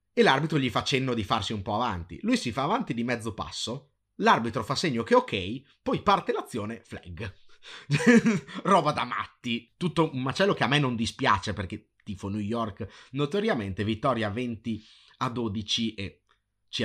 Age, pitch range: 30-49, 100-125 Hz